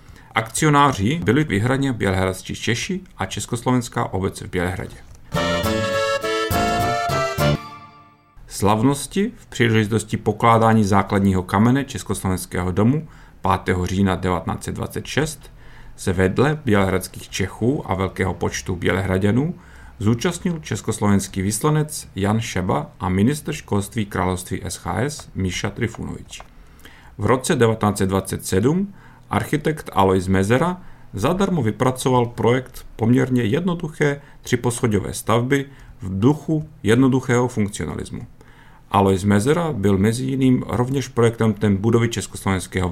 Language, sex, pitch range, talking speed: Czech, male, 95-130 Hz, 95 wpm